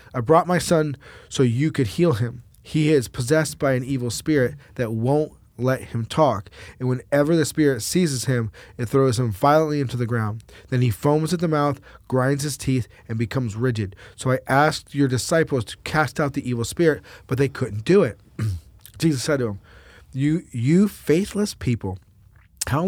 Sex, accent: male, American